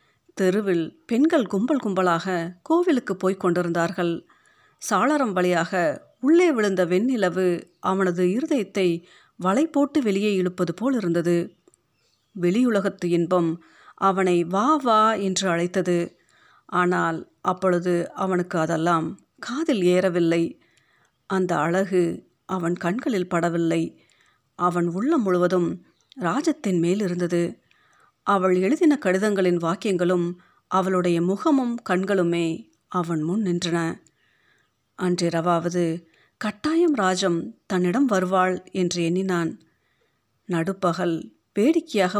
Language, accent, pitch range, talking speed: Tamil, native, 175-205 Hz, 85 wpm